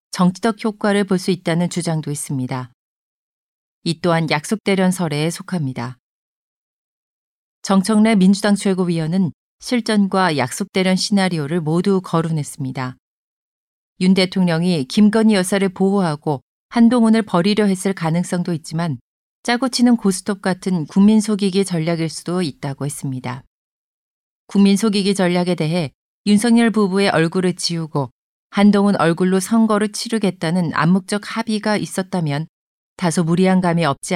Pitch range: 160-205 Hz